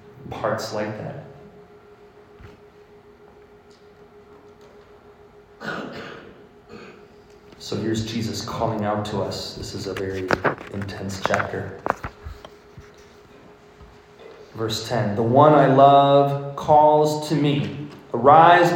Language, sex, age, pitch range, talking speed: English, male, 30-49, 120-160 Hz, 85 wpm